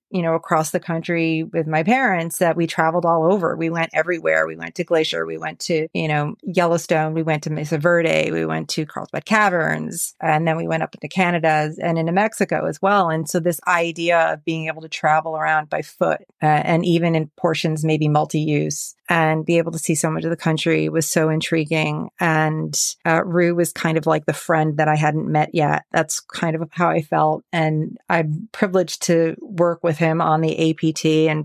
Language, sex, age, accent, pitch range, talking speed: English, female, 30-49, American, 155-175 Hz, 210 wpm